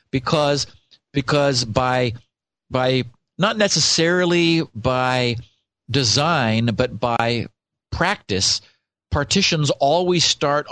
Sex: male